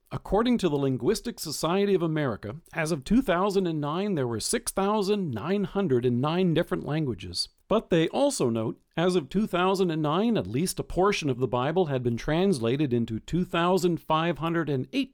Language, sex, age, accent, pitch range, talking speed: English, male, 50-69, American, 145-190 Hz, 135 wpm